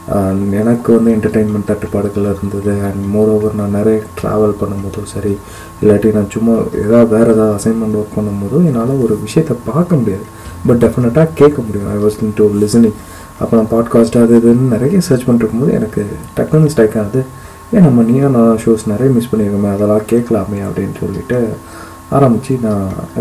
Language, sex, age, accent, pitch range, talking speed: Tamil, male, 20-39, native, 100-120 Hz, 150 wpm